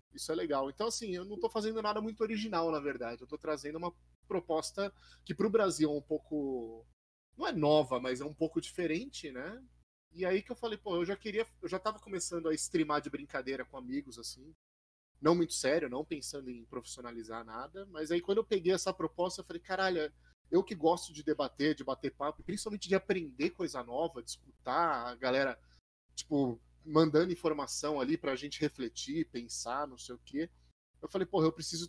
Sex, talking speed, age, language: male, 200 wpm, 30-49, Portuguese